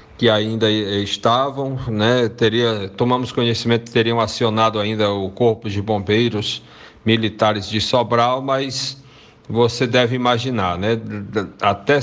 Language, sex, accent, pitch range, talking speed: Portuguese, male, Brazilian, 110-125 Hz, 120 wpm